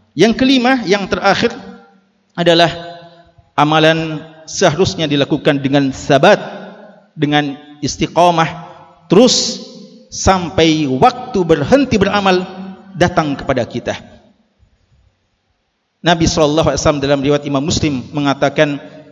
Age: 50-69